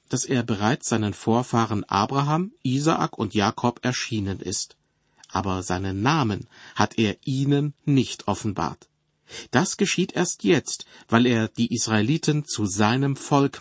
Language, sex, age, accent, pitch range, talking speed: German, male, 40-59, German, 105-135 Hz, 130 wpm